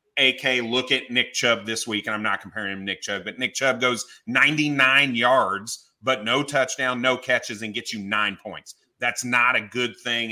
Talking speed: 210 wpm